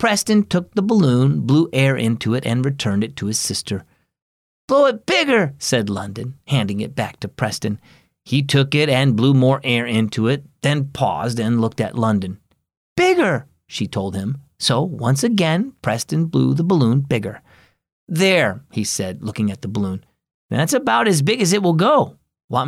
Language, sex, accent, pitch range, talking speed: English, male, American, 110-160 Hz, 175 wpm